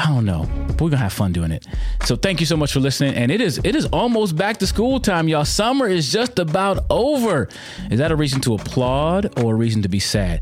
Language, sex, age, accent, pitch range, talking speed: English, male, 30-49, American, 120-165 Hz, 260 wpm